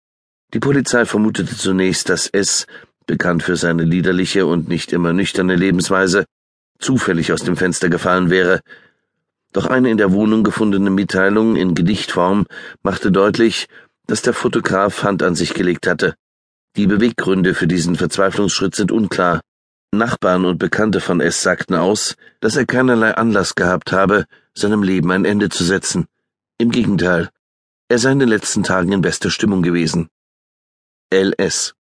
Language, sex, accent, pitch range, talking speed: German, male, German, 85-105 Hz, 150 wpm